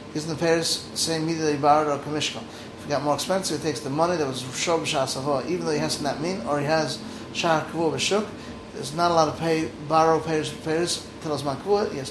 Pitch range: 150-170 Hz